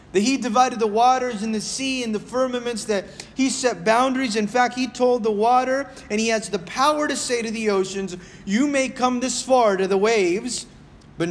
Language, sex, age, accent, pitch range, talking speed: English, male, 30-49, American, 205-250 Hz, 210 wpm